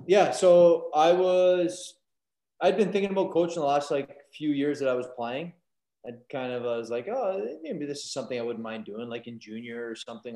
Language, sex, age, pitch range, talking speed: English, male, 20-39, 115-145 Hz, 220 wpm